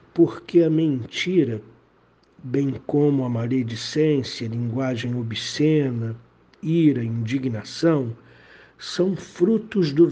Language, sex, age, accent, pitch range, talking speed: Portuguese, male, 60-79, Brazilian, 120-165 Hz, 85 wpm